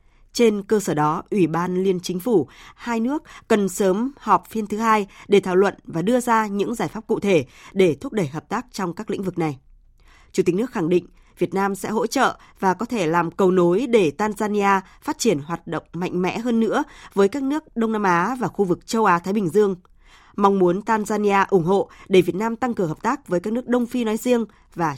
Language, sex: Vietnamese, female